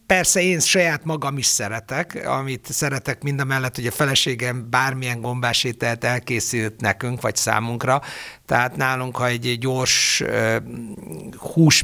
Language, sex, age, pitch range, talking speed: Hungarian, male, 60-79, 120-145 Hz, 135 wpm